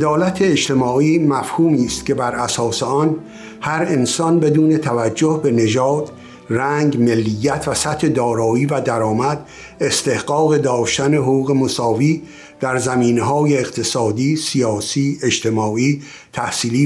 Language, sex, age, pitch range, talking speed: Persian, male, 60-79, 115-150 Hz, 110 wpm